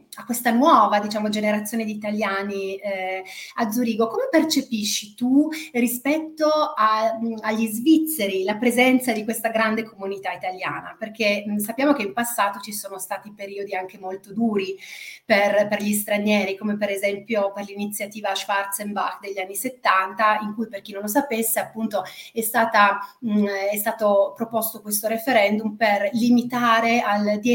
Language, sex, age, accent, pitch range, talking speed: Italian, female, 30-49, native, 205-245 Hz, 150 wpm